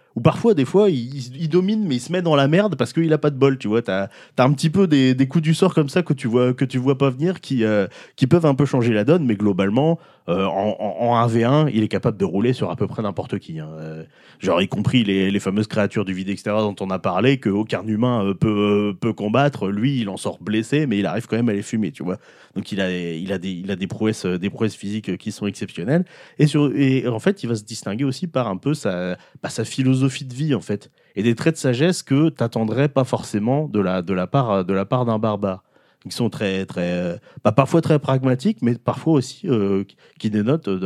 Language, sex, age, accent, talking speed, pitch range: French, male, 30-49, French, 255 wpm, 100-140 Hz